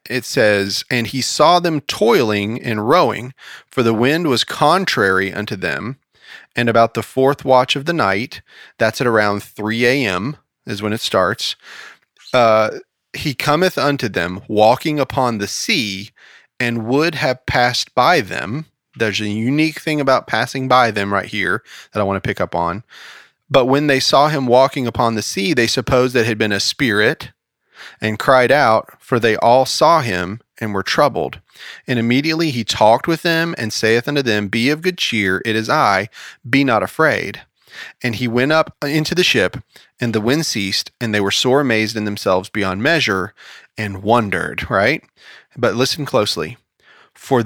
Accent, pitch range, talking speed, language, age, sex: American, 110-140 Hz, 175 wpm, English, 30-49, male